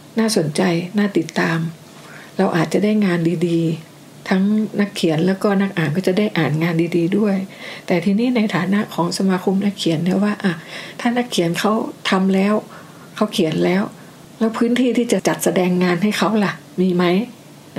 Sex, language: female, Thai